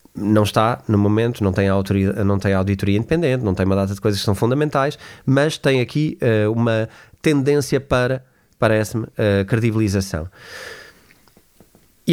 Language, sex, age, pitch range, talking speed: Portuguese, male, 20-39, 100-135 Hz, 155 wpm